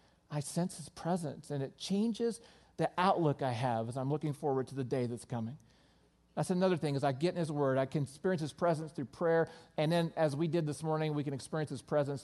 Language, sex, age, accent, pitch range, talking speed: English, male, 40-59, American, 130-165 Hz, 235 wpm